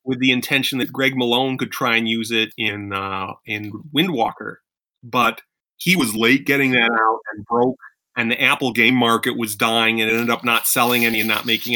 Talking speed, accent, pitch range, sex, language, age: 210 wpm, American, 115-135 Hz, male, English, 30-49